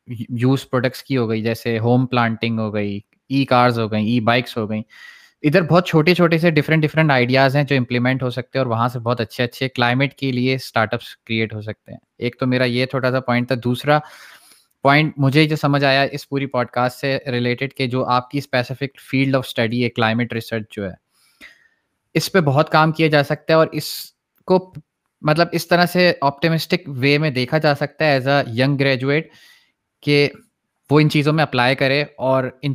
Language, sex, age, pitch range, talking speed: Urdu, male, 20-39, 120-145 Hz, 200 wpm